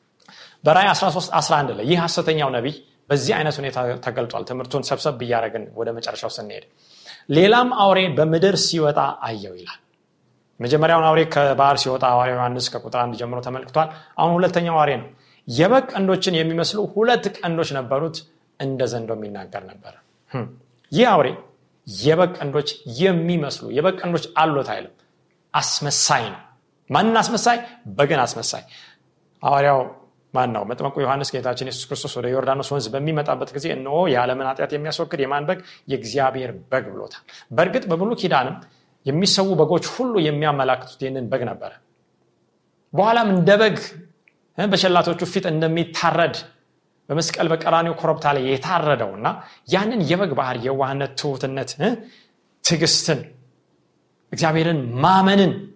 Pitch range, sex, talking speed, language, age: 135-175 Hz, male, 90 wpm, Amharic, 30-49